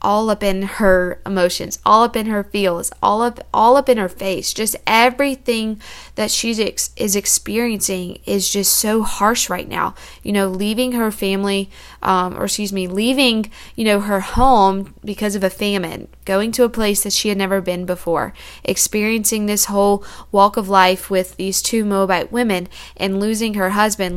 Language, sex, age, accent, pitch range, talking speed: English, female, 20-39, American, 195-225 Hz, 180 wpm